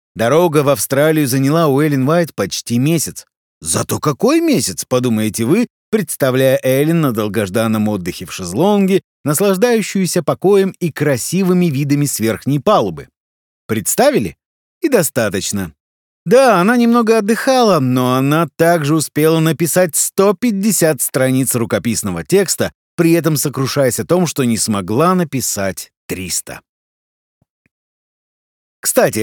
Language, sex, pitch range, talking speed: Russian, male, 120-180 Hz, 115 wpm